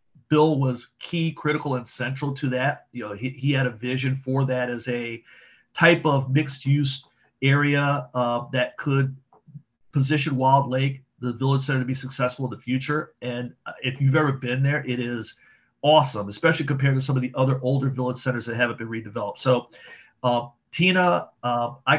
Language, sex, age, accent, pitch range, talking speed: English, male, 40-59, American, 125-140 Hz, 180 wpm